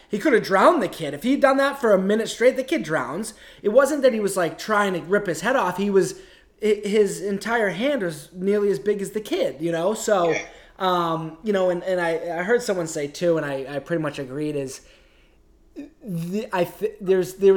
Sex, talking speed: male, 225 wpm